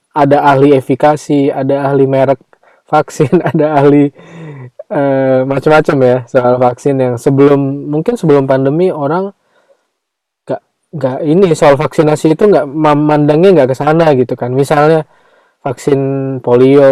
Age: 20-39